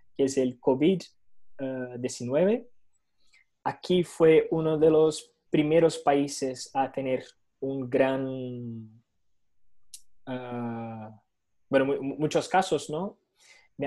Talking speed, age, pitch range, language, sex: 100 wpm, 20-39, 125-160 Hz, Portuguese, male